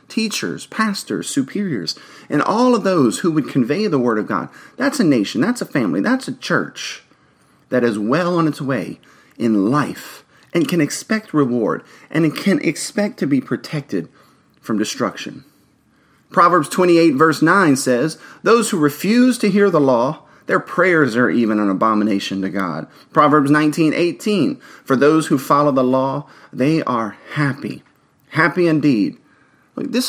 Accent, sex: American, male